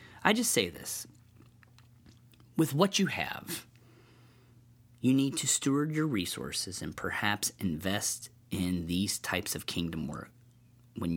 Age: 40-59